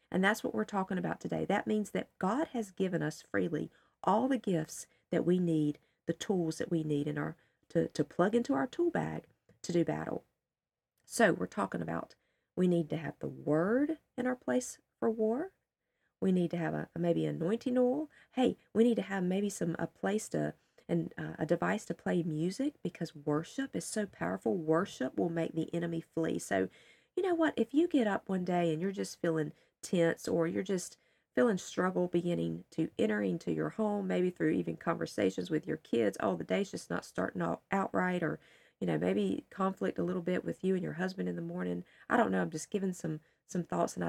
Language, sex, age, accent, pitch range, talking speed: English, female, 40-59, American, 160-215 Hz, 210 wpm